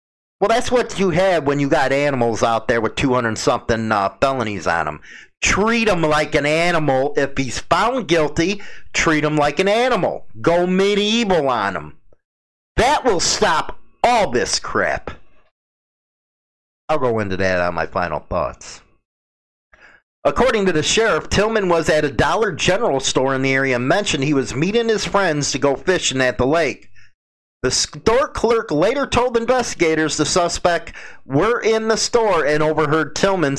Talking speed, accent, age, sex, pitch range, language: 160 wpm, American, 40-59, male, 135-190 Hz, English